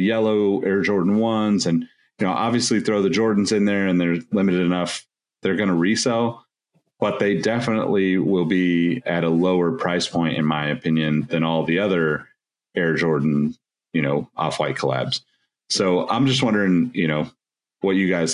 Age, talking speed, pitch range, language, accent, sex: 30-49, 175 wpm, 85-100 Hz, English, American, male